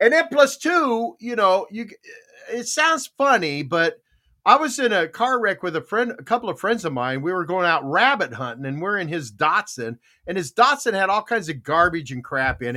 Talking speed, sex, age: 225 wpm, male, 50-69